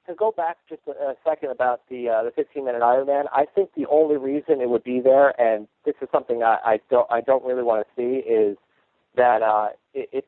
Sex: male